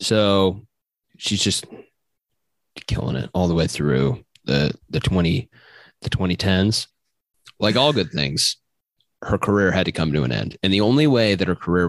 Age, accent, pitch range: 20-39, American, 80-100 Hz